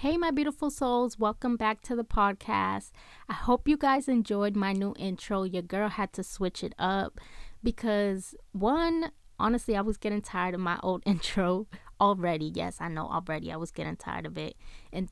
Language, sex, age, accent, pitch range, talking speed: English, female, 20-39, American, 175-210 Hz, 185 wpm